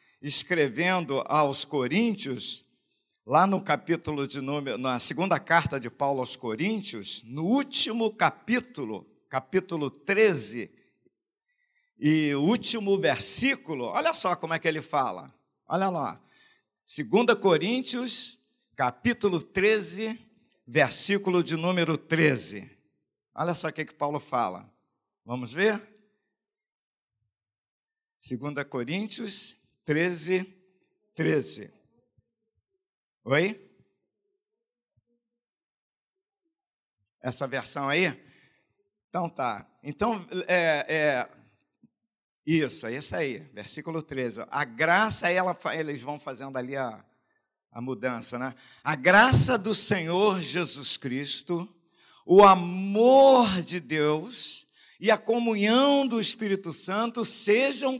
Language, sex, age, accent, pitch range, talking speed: Portuguese, male, 50-69, Brazilian, 145-225 Hz, 100 wpm